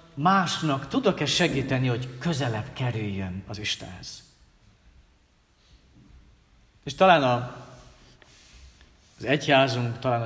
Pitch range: 115-150 Hz